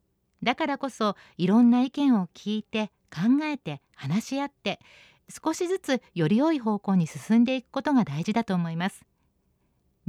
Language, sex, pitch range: Japanese, female, 180-275 Hz